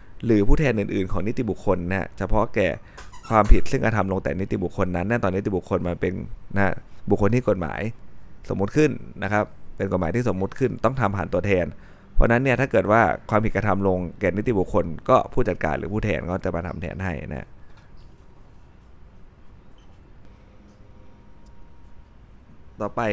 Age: 20-39